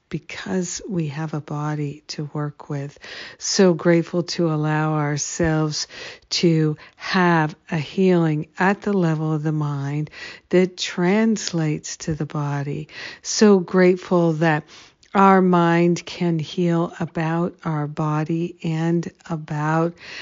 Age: 60-79